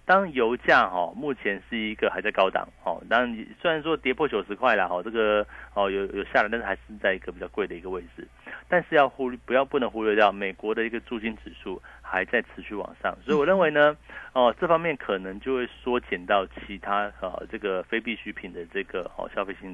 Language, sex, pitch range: Chinese, male, 95-135 Hz